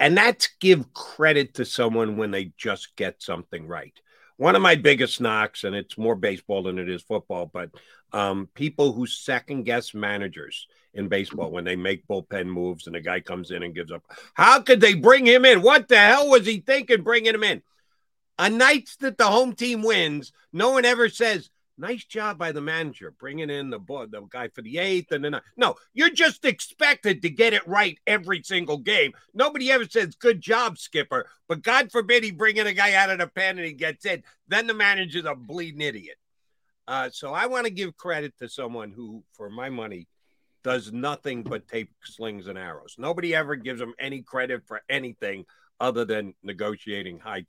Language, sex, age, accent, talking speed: English, male, 50-69, American, 200 wpm